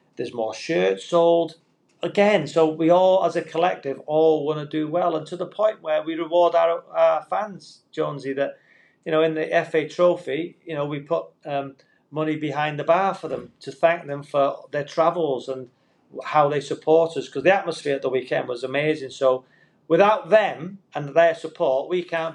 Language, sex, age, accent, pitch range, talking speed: English, male, 40-59, British, 140-170 Hz, 195 wpm